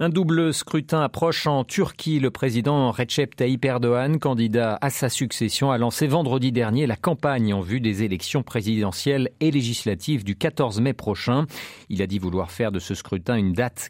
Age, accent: 40-59, French